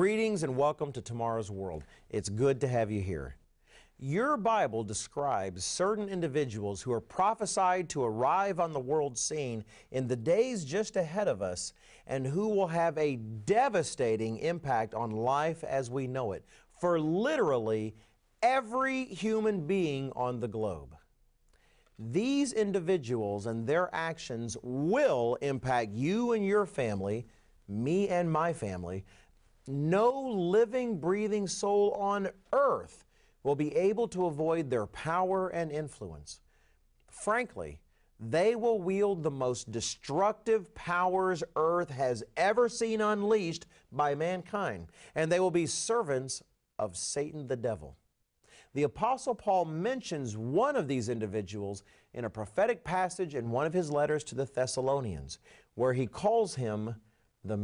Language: English